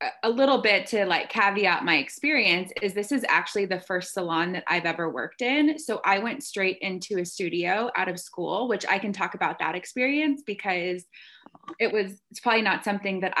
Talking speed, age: 200 wpm, 20-39